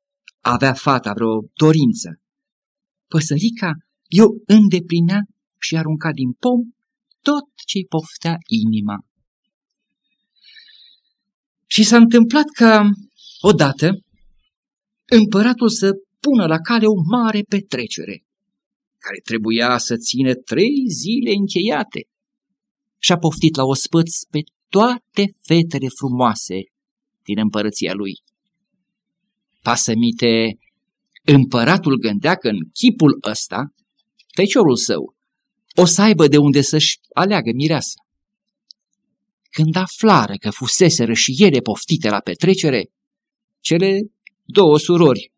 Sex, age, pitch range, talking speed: male, 50-69, 135-225 Hz, 100 wpm